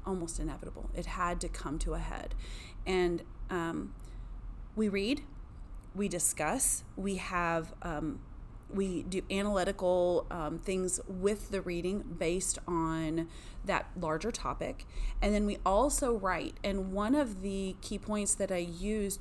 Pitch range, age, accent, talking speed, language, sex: 175-205 Hz, 30-49, American, 140 wpm, English, female